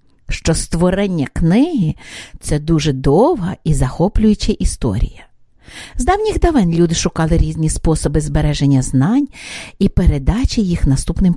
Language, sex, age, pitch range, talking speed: English, female, 50-69, 150-230 Hz, 115 wpm